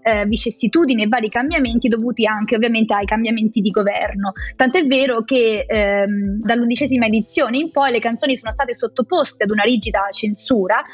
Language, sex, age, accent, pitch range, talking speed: Italian, female, 20-39, native, 215-285 Hz, 160 wpm